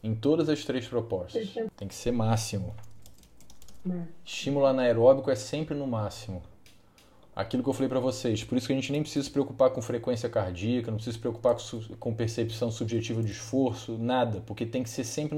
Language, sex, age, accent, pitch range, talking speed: Portuguese, male, 20-39, Brazilian, 110-140 Hz, 190 wpm